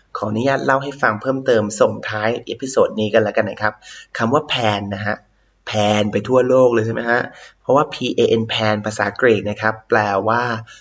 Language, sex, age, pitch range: Thai, male, 20-39, 105-130 Hz